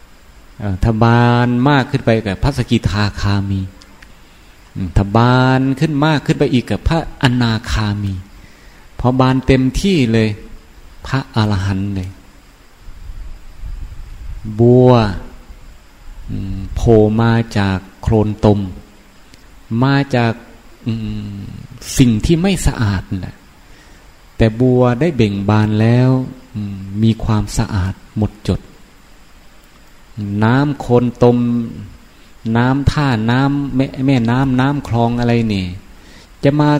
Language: Thai